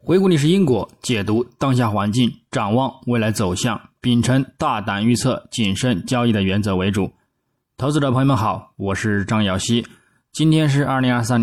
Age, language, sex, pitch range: 20-39, Chinese, male, 105-130 Hz